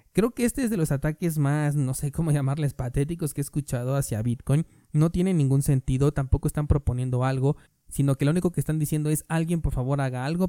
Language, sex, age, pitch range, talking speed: Spanish, male, 20-39, 125-150 Hz, 225 wpm